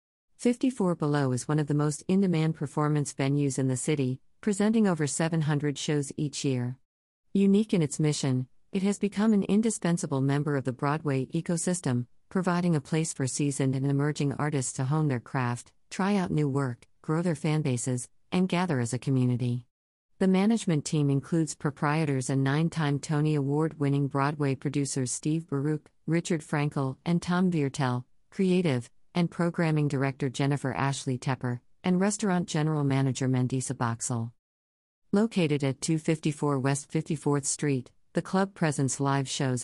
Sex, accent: female, American